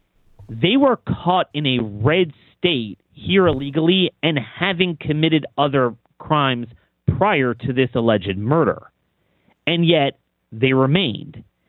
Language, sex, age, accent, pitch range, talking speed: English, male, 30-49, American, 130-180 Hz, 120 wpm